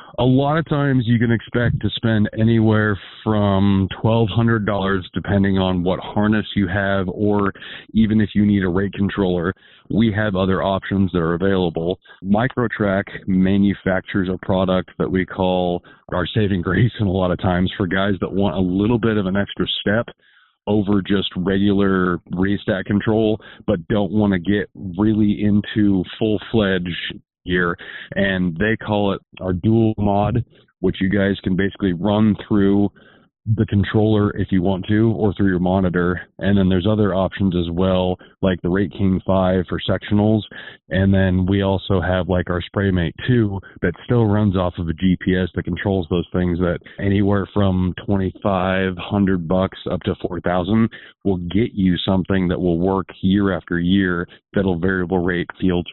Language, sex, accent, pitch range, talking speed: English, male, American, 90-105 Hz, 165 wpm